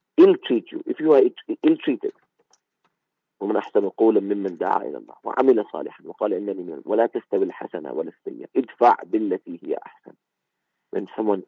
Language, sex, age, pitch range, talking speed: English, male, 50-69, 350-435 Hz, 95 wpm